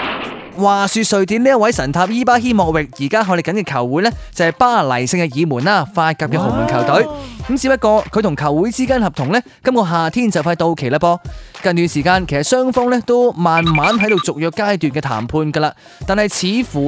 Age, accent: 20-39, native